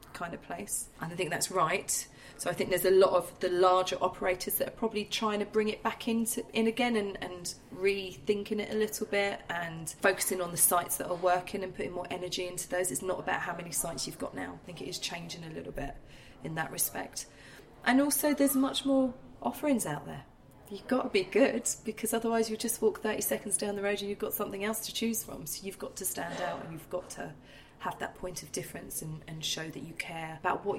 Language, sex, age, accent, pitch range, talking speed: English, female, 30-49, British, 165-205 Hz, 240 wpm